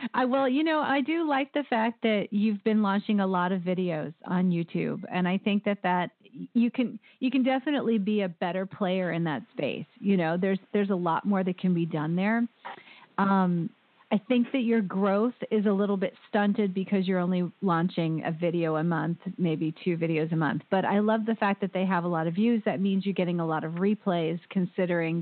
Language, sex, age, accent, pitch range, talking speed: English, female, 40-59, American, 170-215 Hz, 220 wpm